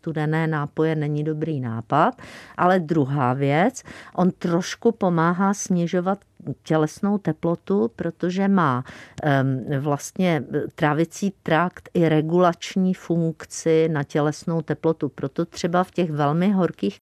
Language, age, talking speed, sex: Czech, 50-69, 110 wpm, female